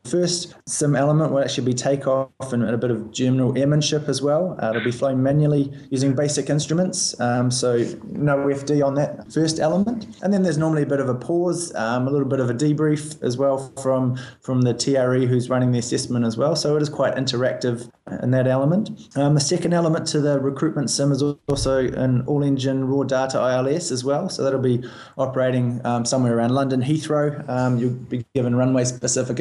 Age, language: 20-39, English